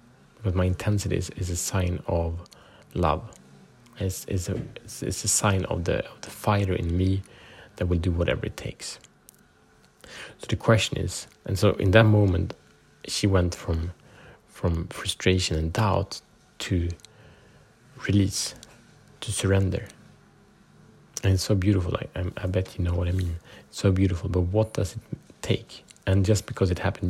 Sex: male